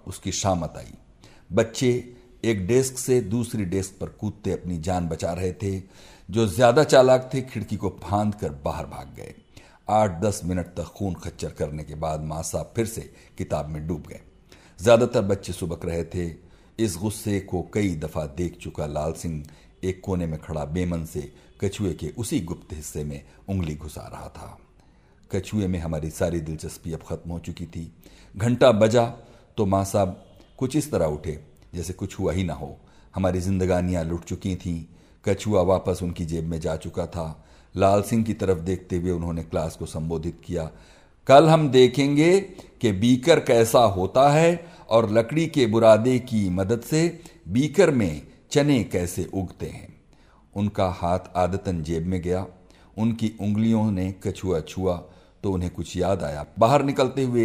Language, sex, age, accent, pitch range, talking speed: Hindi, male, 60-79, native, 85-110 Hz, 170 wpm